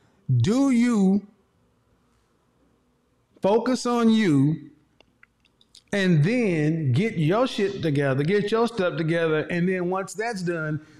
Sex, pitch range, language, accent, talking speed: male, 140-205 Hz, English, American, 110 wpm